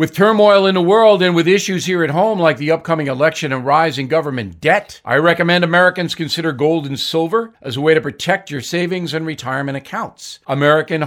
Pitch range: 140-190 Hz